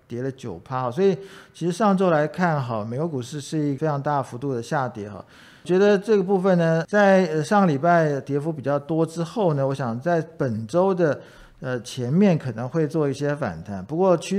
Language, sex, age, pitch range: Chinese, male, 50-69, 130-165 Hz